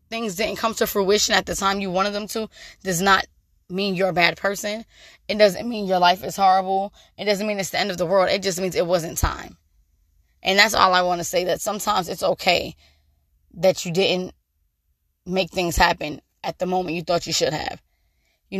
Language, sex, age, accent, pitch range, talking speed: English, female, 20-39, American, 175-205 Hz, 215 wpm